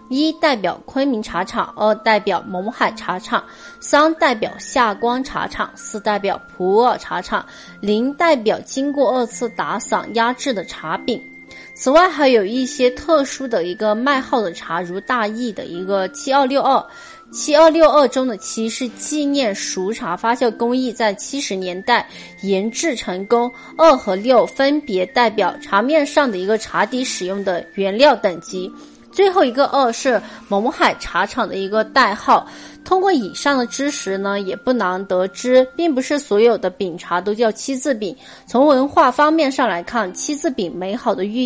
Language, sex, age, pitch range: Chinese, female, 20-39, 200-280 Hz